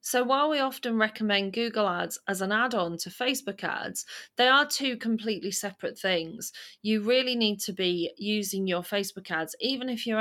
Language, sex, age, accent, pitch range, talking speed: English, female, 30-49, British, 180-230 Hz, 180 wpm